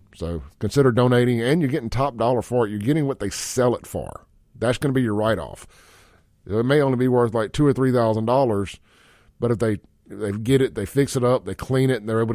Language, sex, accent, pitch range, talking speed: English, male, American, 100-140 Hz, 250 wpm